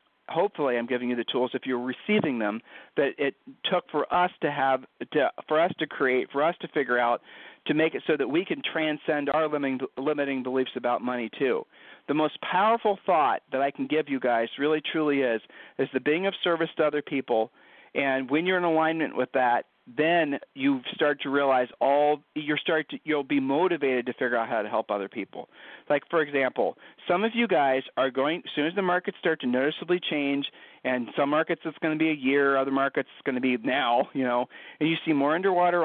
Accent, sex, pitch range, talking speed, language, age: American, male, 130-165 Hz, 220 wpm, English, 50-69